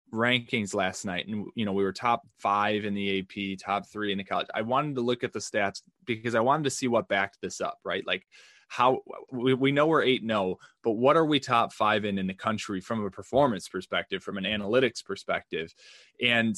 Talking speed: 225 wpm